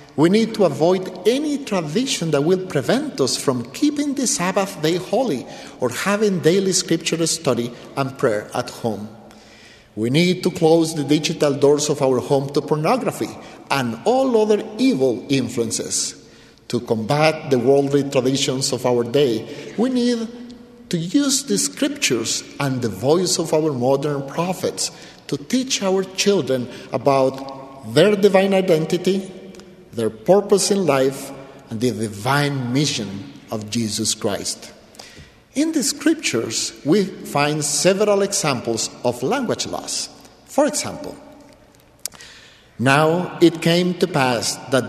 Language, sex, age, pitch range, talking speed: English, male, 50-69, 130-195 Hz, 135 wpm